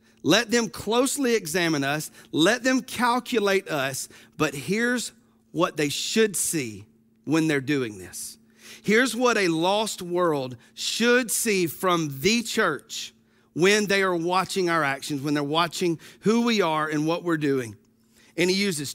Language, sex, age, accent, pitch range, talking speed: English, male, 40-59, American, 130-205 Hz, 150 wpm